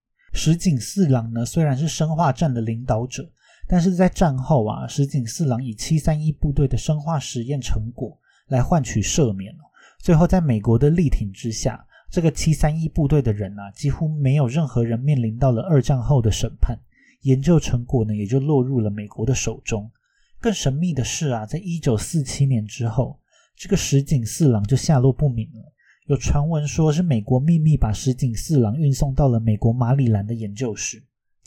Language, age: Chinese, 30-49